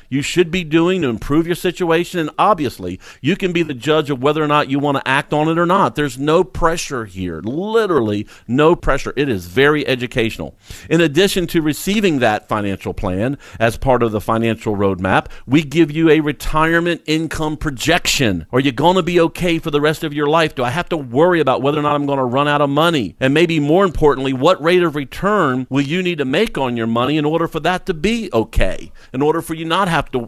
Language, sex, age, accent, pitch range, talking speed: English, male, 50-69, American, 130-175 Hz, 230 wpm